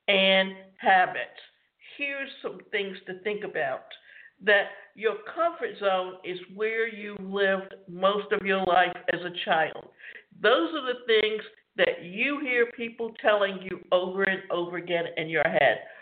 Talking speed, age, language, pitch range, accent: 150 wpm, 50-69, English, 185-230 Hz, American